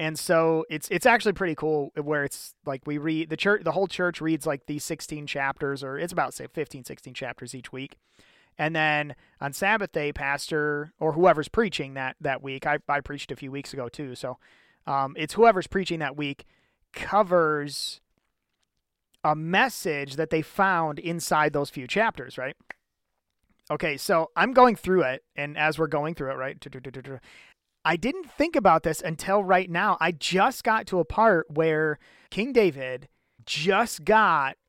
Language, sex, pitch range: English, male, 150-190 Hz